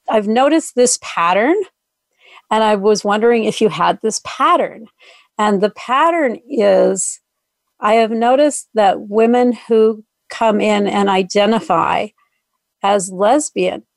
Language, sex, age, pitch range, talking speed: English, female, 50-69, 200-240 Hz, 125 wpm